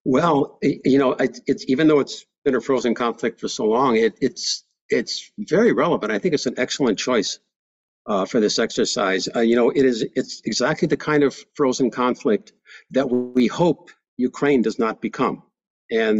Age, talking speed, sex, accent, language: 60-79, 180 wpm, male, American, English